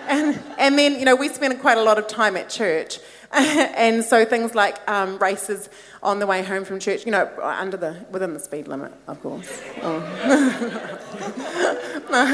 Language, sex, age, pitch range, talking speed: English, female, 30-49, 170-220 Hz, 180 wpm